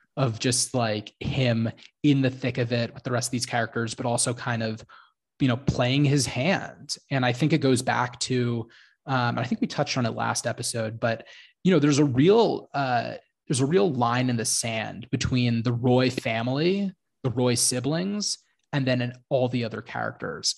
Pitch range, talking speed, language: 115-135 Hz, 200 wpm, English